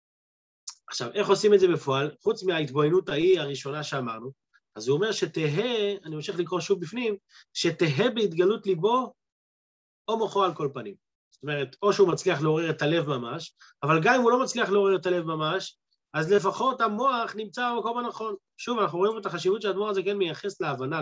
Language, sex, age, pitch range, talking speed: Hebrew, male, 30-49, 155-210 Hz, 180 wpm